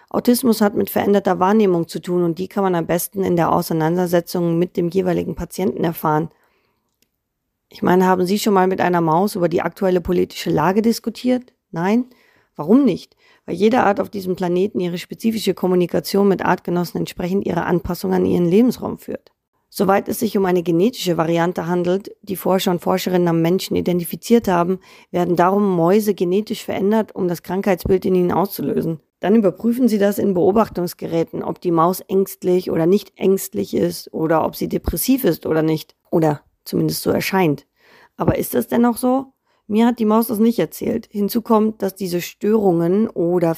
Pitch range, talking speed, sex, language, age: 175-200 Hz, 175 wpm, female, German, 30-49